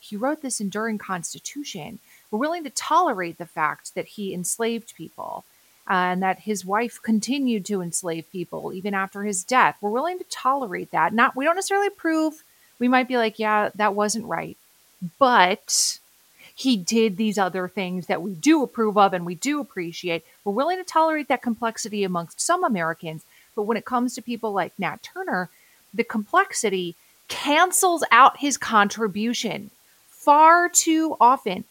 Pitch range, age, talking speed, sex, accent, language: 200-285 Hz, 30-49, 165 wpm, female, American, English